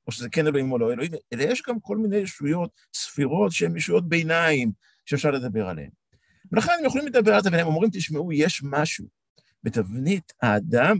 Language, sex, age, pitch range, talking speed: Hebrew, male, 50-69, 125-195 Hz, 175 wpm